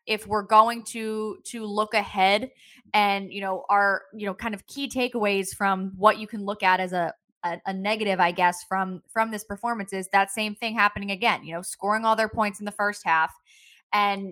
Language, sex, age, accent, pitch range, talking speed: English, female, 20-39, American, 190-230 Hz, 215 wpm